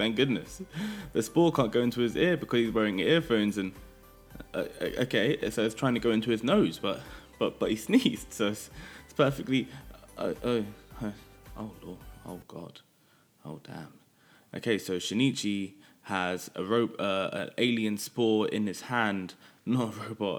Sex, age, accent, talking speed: male, 20-39, British, 170 wpm